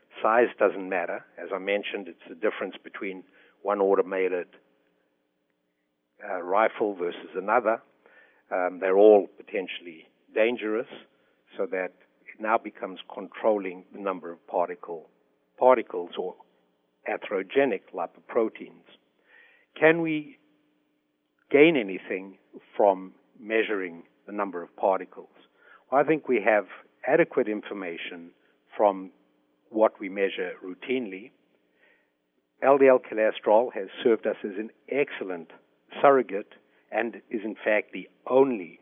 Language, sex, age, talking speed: English, male, 60-79, 110 wpm